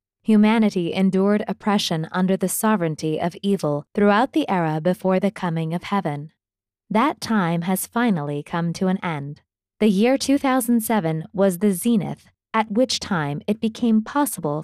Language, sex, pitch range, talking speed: English, female, 160-225 Hz, 150 wpm